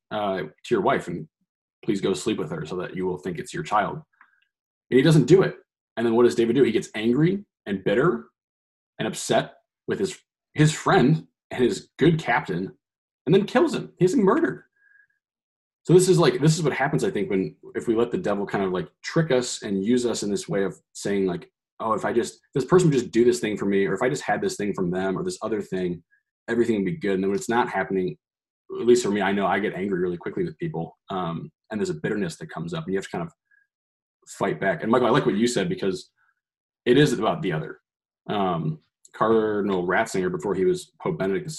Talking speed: 240 wpm